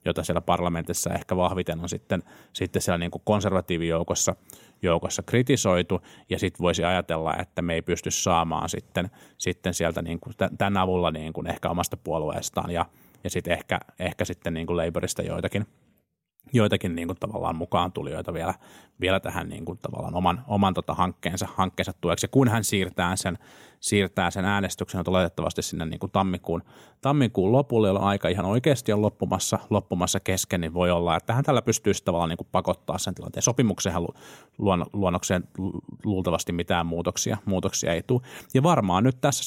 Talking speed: 170 wpm